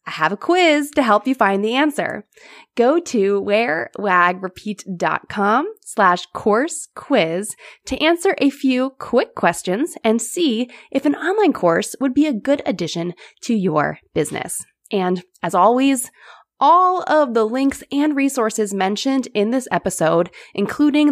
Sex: female